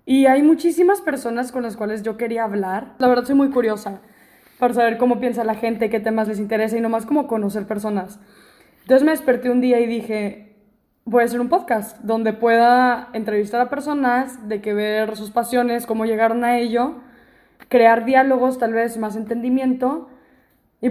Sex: female